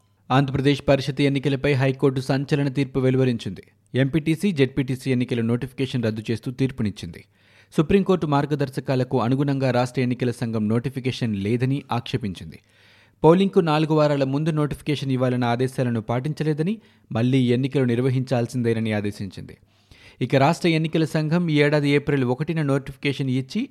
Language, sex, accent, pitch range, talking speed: Telugu, male, native, 115-150 Hz, 115 wpm